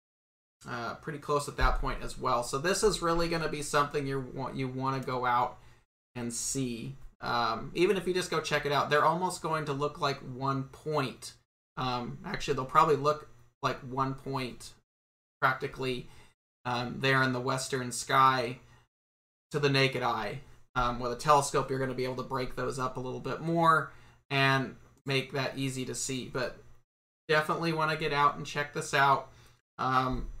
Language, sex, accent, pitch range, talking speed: English, male, American, 125-150 Hz, 190 wpm